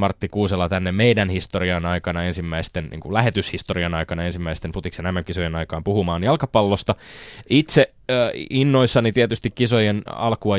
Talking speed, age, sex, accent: 125 wpm, 20-39, male, native